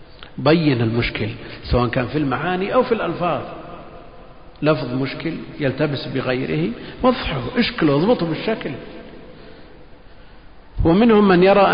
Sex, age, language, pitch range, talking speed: male, 50-69, Arabic, 120-160 Hz, 100 wpm